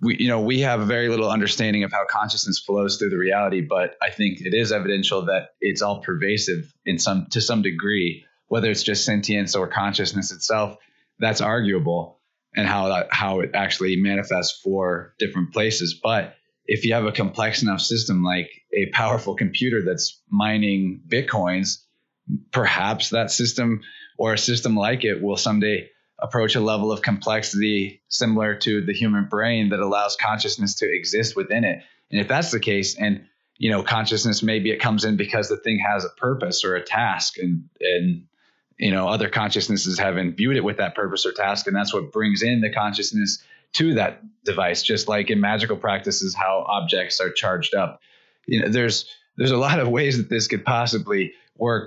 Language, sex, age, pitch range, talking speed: English, male, 20-39, 100-115 Hz, 185 wpm